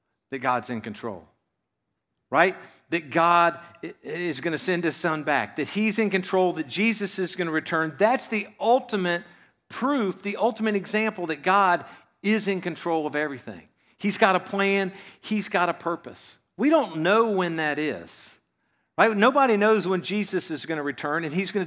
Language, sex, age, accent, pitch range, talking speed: English, male, 50-69, American, 155-200 Hz, 175 wpm